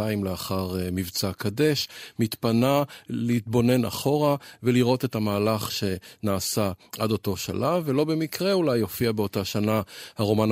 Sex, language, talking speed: male, Hebrew, 120 wpm